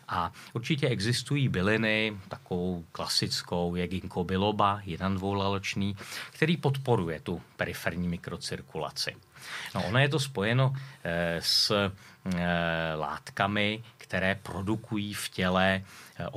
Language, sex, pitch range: Czech, male, 90-115 Hz